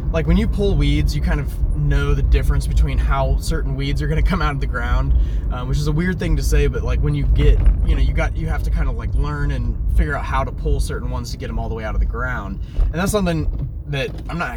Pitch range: 70-115 Hz